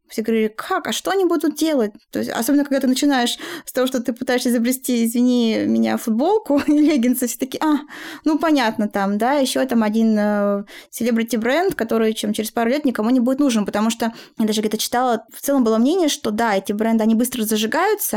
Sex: female